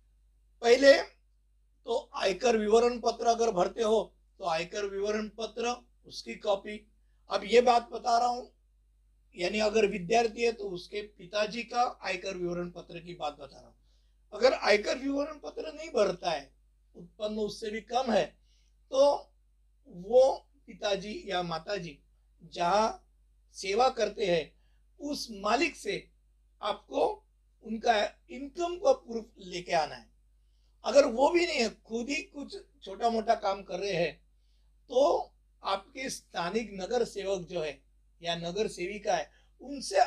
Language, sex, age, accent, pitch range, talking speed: Hindi, male, 50-69, native, 175-245 Hz, 140 wpm